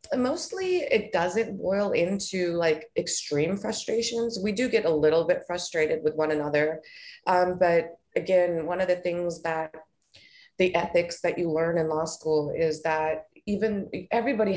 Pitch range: 155-190 Hz